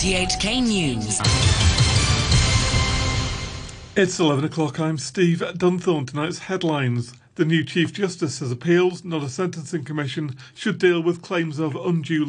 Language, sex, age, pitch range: English, male, 40-59, 135-170 Hz